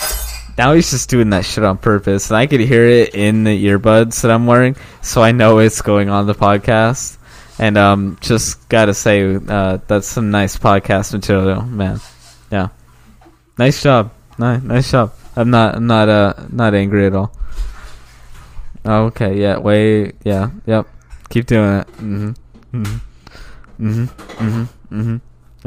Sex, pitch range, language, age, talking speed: male, 100-115 Hz, English, 10-29, 155 wpm